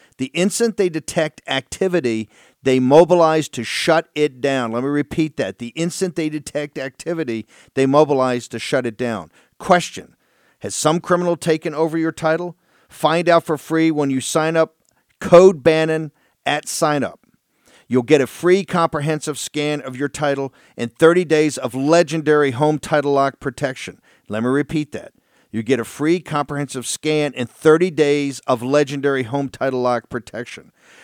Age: 50-69